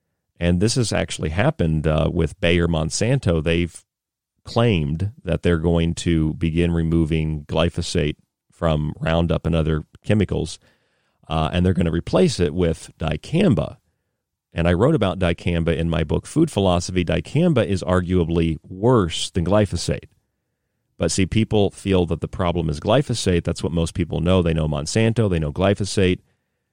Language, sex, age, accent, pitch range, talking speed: English, male, 40-59, American, 85-105 Hz, 150 wpm